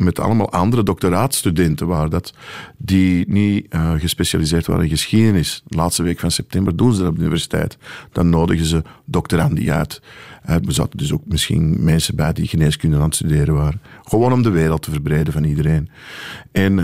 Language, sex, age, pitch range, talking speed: Dutch, male, 50-69, 80-100 Hz, 190 wpm